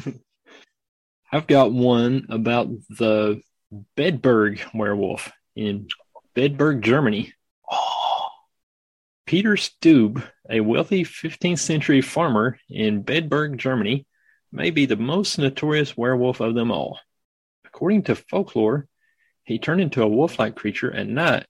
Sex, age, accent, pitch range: male, 30-49, American, 110-145 Hz